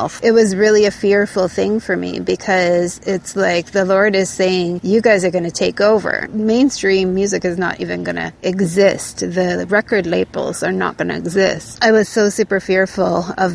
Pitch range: 175-200 Hz